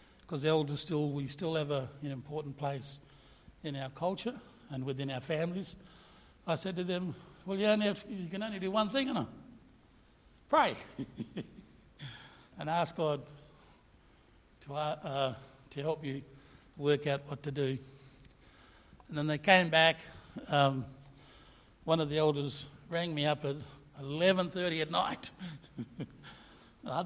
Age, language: 60-79, English